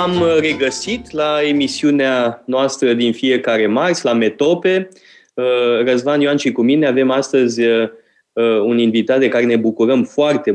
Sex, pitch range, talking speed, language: male, 115-140 Hz, 135 wpm, Romanian